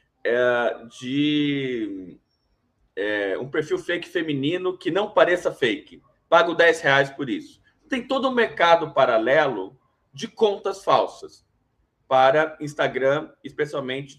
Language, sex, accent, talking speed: Portuguese, male, Brazilian, 115 wpm